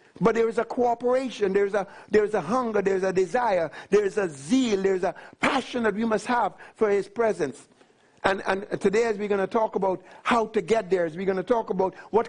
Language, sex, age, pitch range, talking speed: English, male, 60-79, 200-240 Hz, 245 wpm